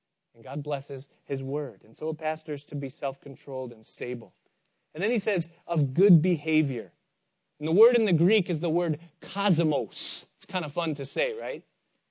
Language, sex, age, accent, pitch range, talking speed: English, male, 30-49, American, 150-185 Hz, 195 wpm